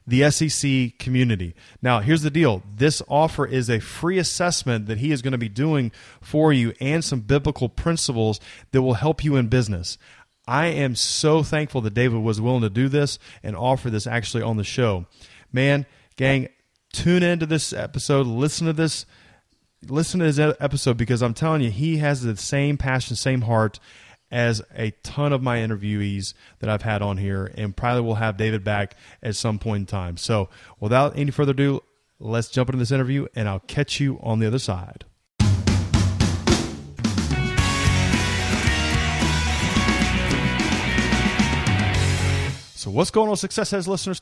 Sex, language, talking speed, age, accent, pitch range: male, English, 165 wpm, 30-49, American, 110-145 Hz